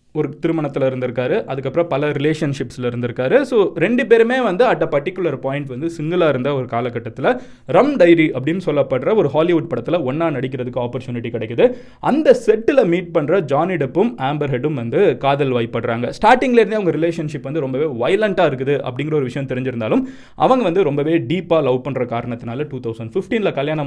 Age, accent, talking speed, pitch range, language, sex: 20-39, native, 155 wpm, 125-190 Hz, Tamil, male